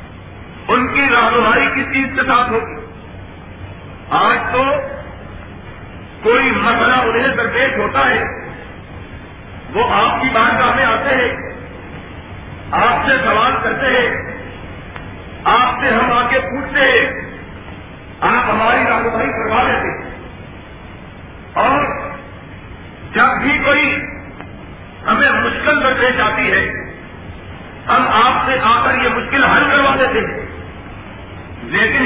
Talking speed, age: 110 wpm, 50-69